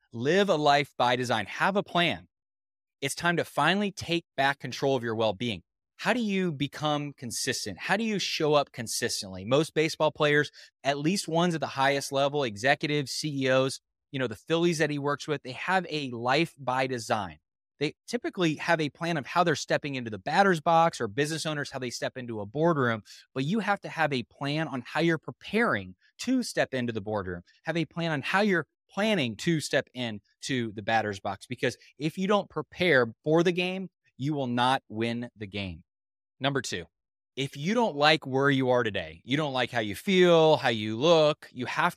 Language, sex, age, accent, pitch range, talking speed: English, male, 20-39, American, 120-165 Hz, 205 wpm